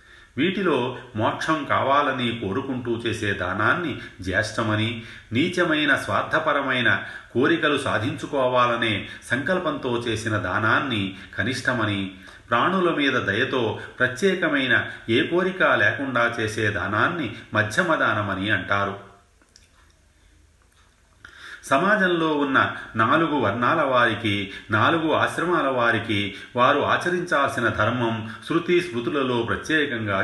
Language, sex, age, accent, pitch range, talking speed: Telugu, male, 30-49, native, 100-125 Hz, 80 wpm